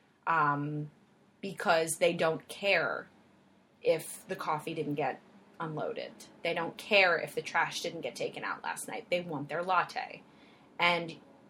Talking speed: 145 wpm